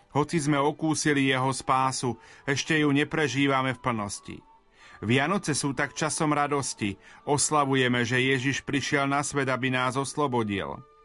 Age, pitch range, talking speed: 30-49, 125-145 Hz, 130 wpm